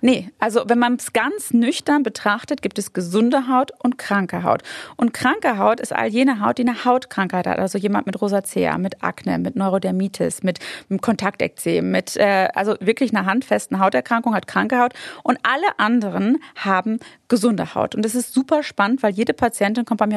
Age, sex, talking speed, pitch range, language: 30-49, female, 190 wpm, 200-250 Hz, German